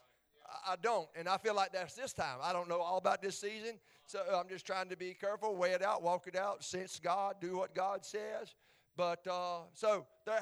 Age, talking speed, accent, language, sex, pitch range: 50-69, 220 wpm, American, English, male, 150-210 Hz